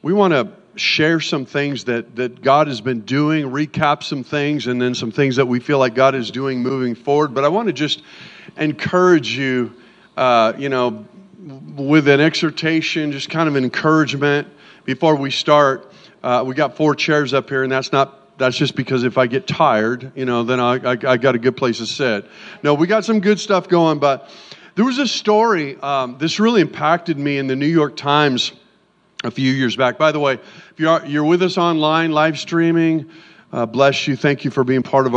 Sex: male